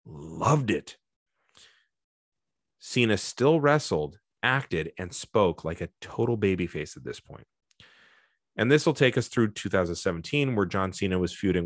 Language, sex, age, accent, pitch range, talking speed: English, male, 30-49, American, 90-130 Hz, 140 wpm